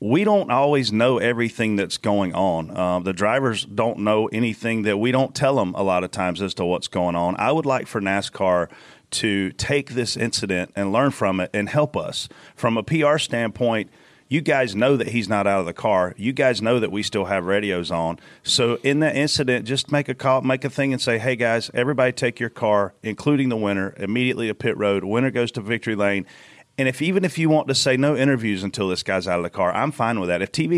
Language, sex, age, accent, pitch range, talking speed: English, male, 40-59, American, 105-135 Hz, 235 wpm